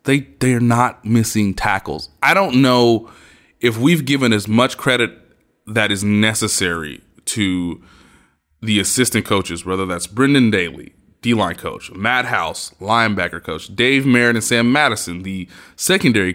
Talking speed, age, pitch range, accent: 140 wpm, 20-39, 100-125 Hz, American